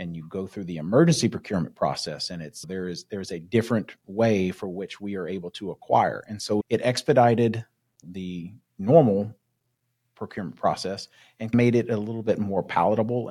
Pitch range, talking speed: 95-115 Hz, 175 wpm